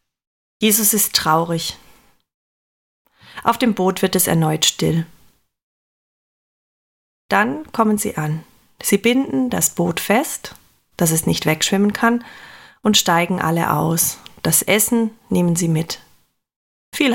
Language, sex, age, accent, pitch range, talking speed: German, female, 30-49, German, 170-225 Hz, 120 wpm